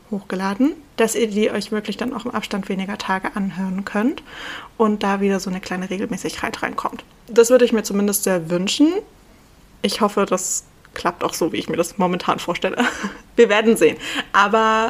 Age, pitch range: 20-39, 200-235 Hz